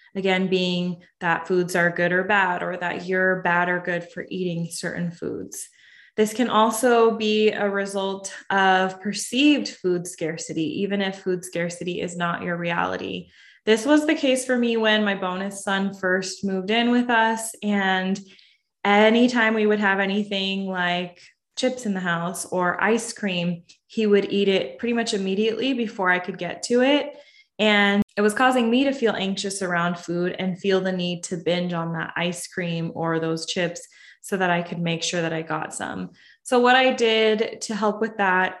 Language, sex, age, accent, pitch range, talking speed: English, female, 20-39, American, 175-215 Hz, 185 wpm